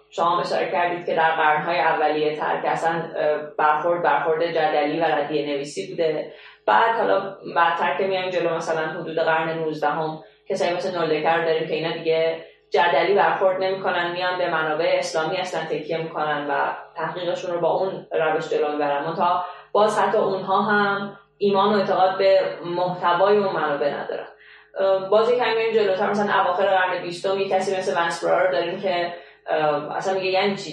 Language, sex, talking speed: Persian, female, 160 wpm